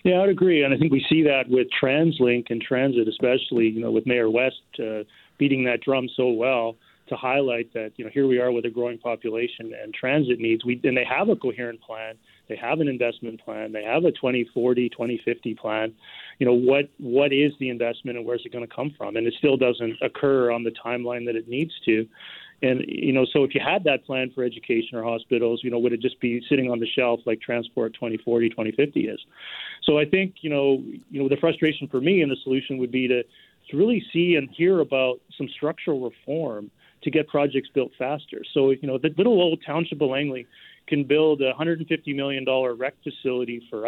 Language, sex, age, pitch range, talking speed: English, male, 30-49, 120-145 Hz, 215 wpm